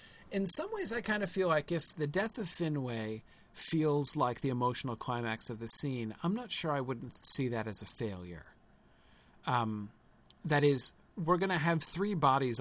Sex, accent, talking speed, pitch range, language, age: male, American, 190 wpm, 120-150 Hz, English, 40-59